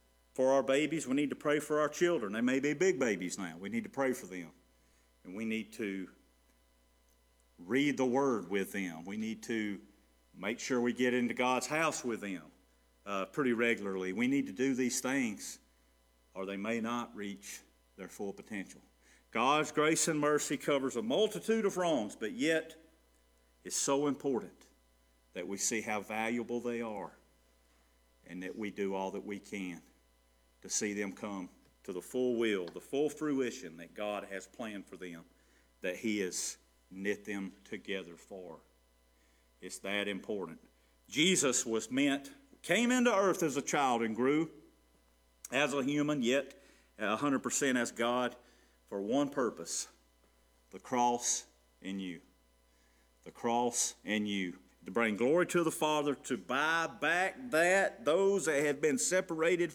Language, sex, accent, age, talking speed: English, male, American, 50-69, 160 wpm